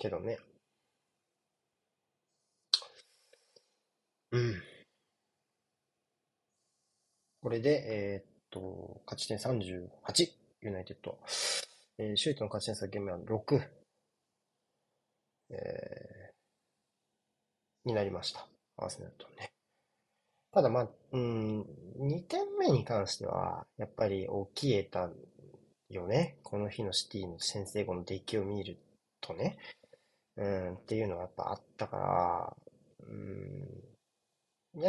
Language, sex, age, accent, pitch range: Japanese, male, 30-49, native, 100-150 Hz